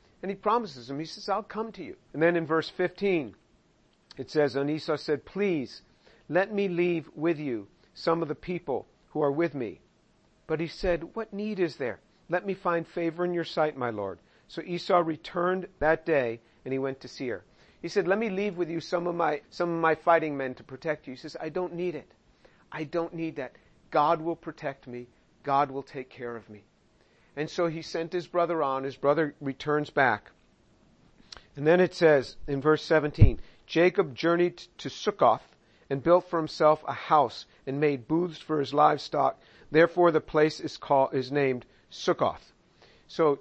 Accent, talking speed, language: American, 195 wpm, English